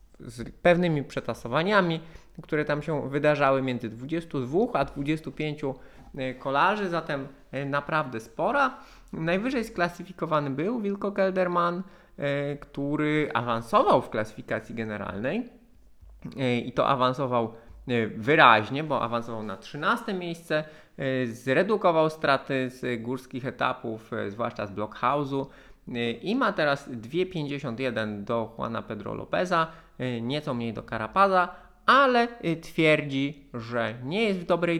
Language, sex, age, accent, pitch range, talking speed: Polish, male, 20-39, native, 125-165 Hz, 105 wpm